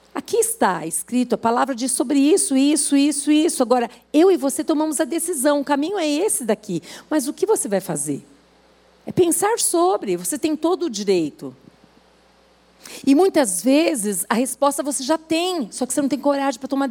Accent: Brazilian